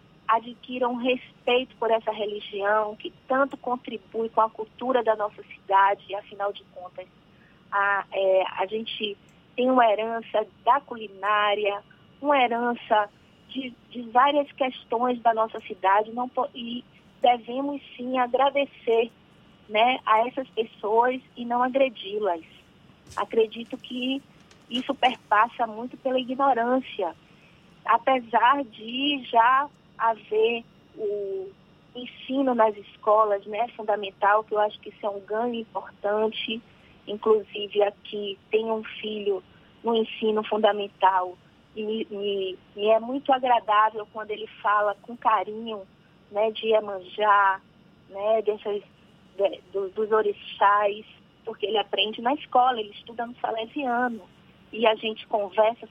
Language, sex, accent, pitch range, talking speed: Portuguese, female, Brazilian, 205-245 Hz, 120 wpm